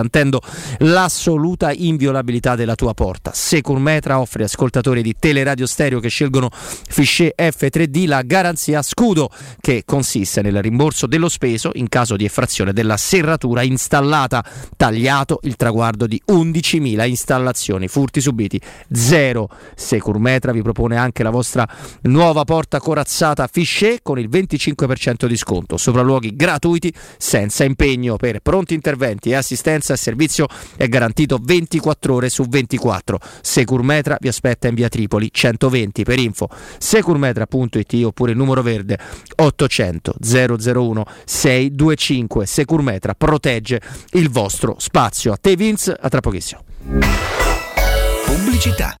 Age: 30-49